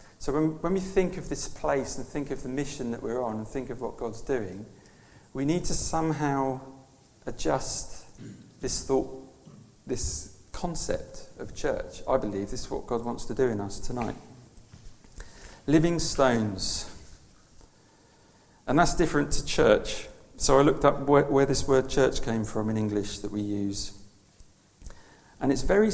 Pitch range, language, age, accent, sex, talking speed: 105-140 Hz, English, 40-59, British, male, 165 wpm